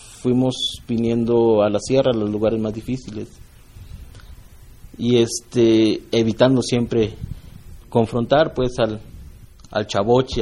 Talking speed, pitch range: 110 wpm, 100-120 Hz